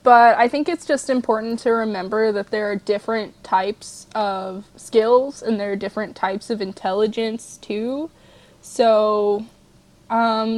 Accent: American